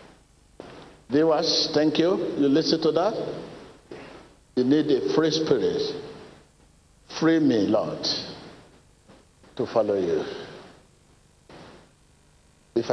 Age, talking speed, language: 60-79, 90 wpm, English